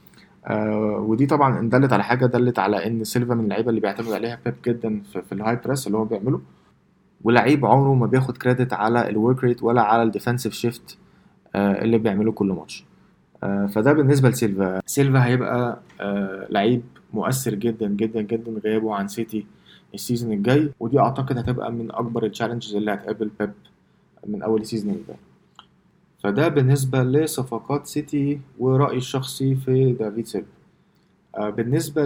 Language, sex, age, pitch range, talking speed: Arabic, male, 20-39, 110-135 Hz, 150 wpm